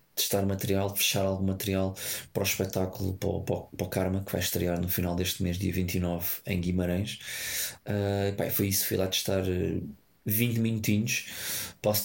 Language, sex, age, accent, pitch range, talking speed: Portuguese, male, 20-39, Portuguese, 95-105 Hz, 155 wpm